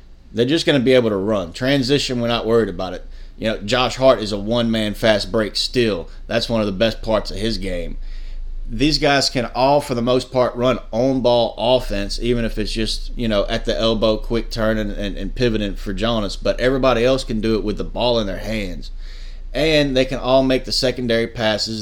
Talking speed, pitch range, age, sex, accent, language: 220 wpm, 105-125 Hz, 30-49, male, American, English